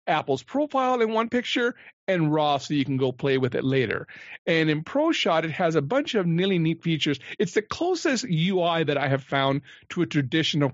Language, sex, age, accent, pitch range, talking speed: English, male, 40-59, American, 140-170 Hz, 205 wpm